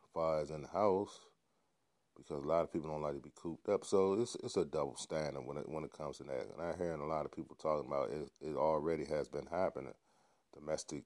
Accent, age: American, 30-49